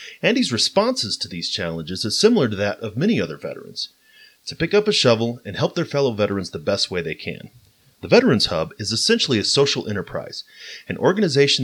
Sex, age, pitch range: male, 30-49, 95-150 Hz